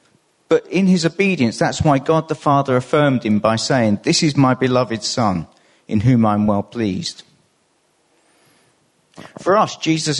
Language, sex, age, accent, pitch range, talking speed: English, male, 40-59, British, 120-165 Hz, 155 wpm